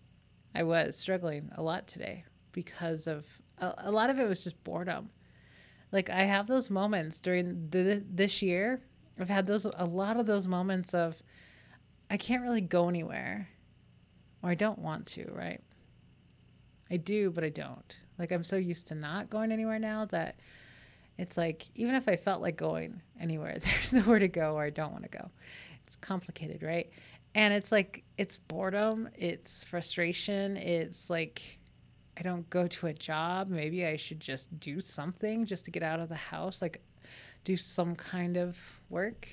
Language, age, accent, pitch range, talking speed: English, 30-49, American, 165-205 Hz, 175 wpm